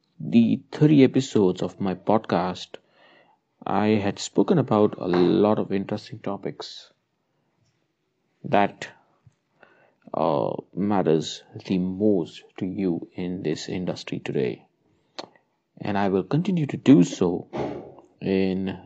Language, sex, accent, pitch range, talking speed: English, male, Indian, 95-115 Hz, 110 wpm